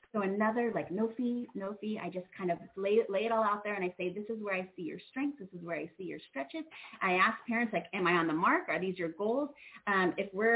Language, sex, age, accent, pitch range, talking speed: English, female, 30-49, American, 180-240 Hz, 285 wpm